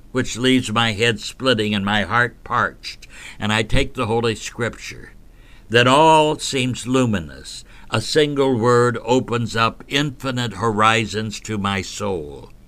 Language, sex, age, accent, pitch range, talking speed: English, male, 60-79, American, 100-125 Hz, 135 wpm